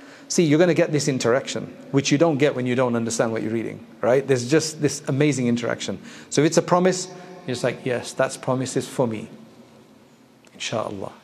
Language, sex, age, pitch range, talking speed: English, male, 40-59, 130-160 Hz, 205 wpm